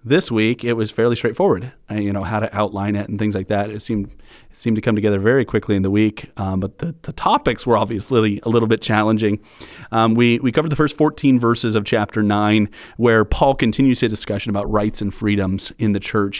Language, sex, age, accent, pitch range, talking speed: English, male, 30-49, American, 105-120 Hz, 225 wpm